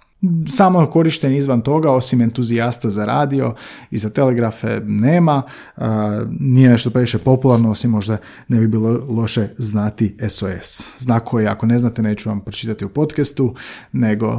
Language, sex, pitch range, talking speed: Croatian, male, 105-130 Hz, 145 wpm